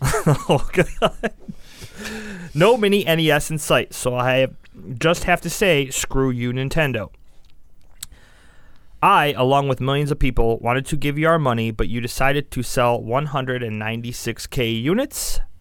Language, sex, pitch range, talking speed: English, male, 110-145 Hz, 135 wpm